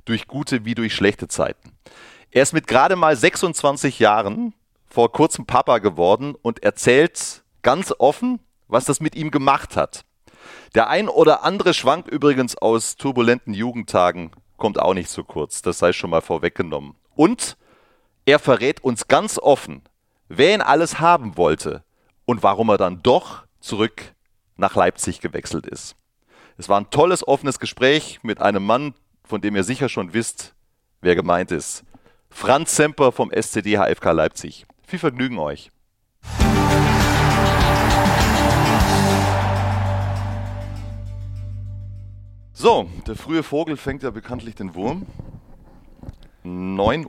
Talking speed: 130 wpm